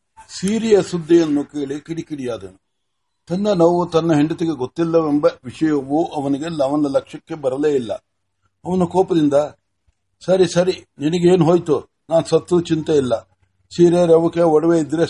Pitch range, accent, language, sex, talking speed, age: 145-175 Hz, native, Kannada, male, 115 wpm, 60-79